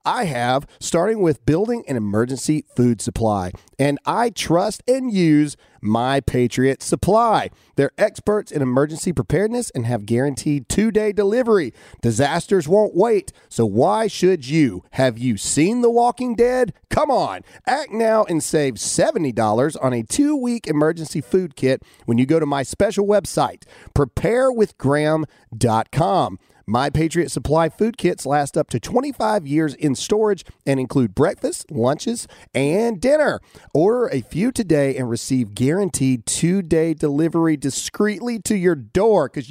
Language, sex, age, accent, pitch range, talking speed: English, male, 40-59, American, 120-205 Hz, 140 wpm